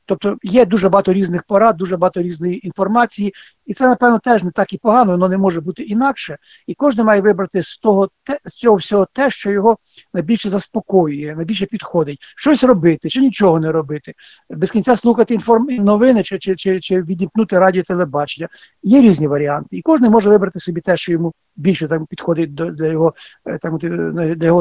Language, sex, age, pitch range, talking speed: Ukrainian, male, 50-69, 170-215 Hz, 180 wpm